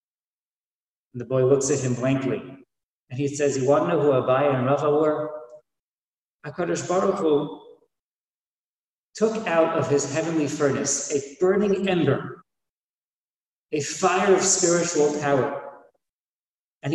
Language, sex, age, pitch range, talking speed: English, male, 40-59, 140-175 Hz, 130 wpm